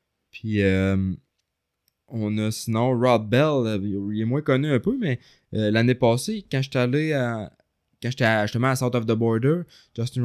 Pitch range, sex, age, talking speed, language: 100-125 Hz, male, 20-39, 170 wpm, French